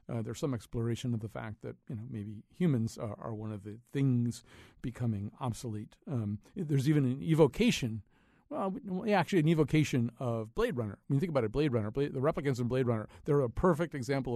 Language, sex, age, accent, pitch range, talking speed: English, male, 50-69, American, 115-145 Hz, 205 wpm